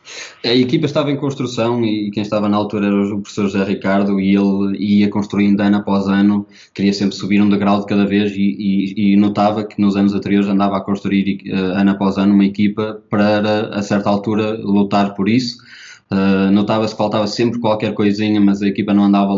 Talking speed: 200 wpm